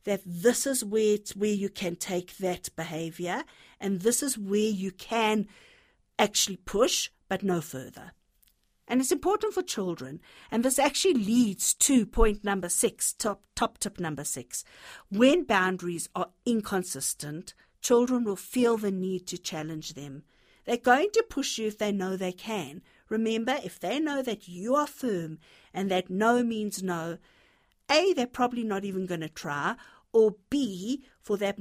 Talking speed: 165 wpm